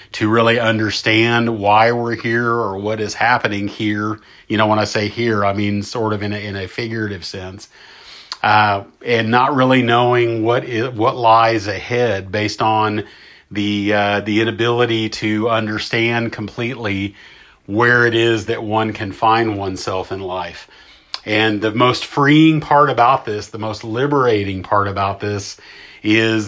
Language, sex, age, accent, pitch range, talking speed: English, male, 40-59, American, 105-120 Hz, 160 wpm